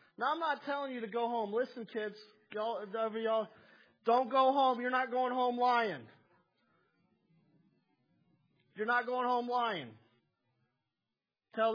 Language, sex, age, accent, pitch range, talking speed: English, male, 40-59, American, 175-240 Hz, 135 wpm